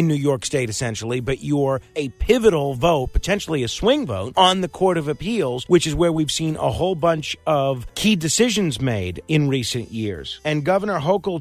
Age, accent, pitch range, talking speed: 40-59, American, 145-205 Hz, 190 wpm